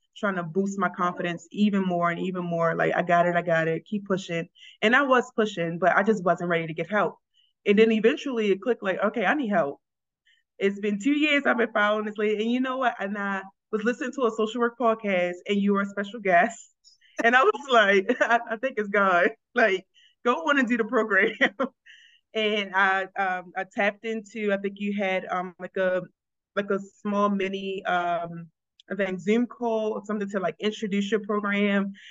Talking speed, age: 215 wpm, 20-39